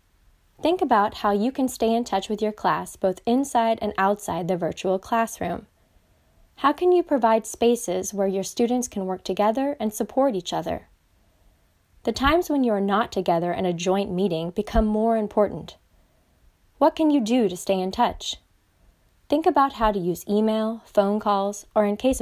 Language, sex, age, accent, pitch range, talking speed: English, female, 20-39, American, 180-240 Hz, 180 wpm